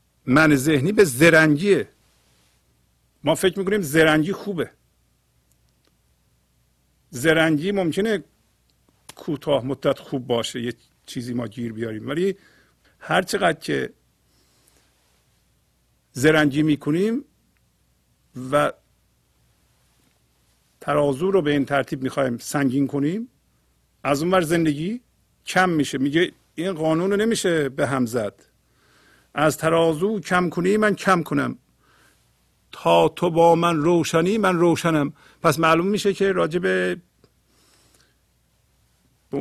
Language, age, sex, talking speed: Persian, 50-69, male, 100 wpm